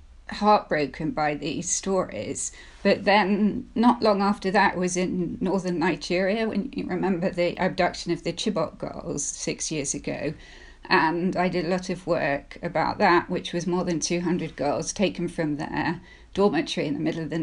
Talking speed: 170 wpm